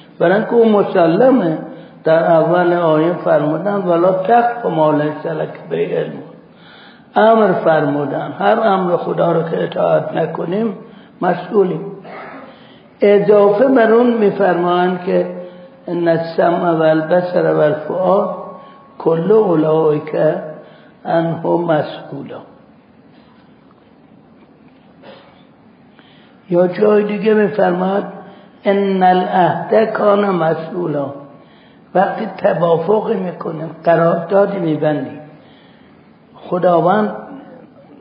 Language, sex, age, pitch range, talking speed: Persian, male, 60-79, 165-215 Hz, 80 wpm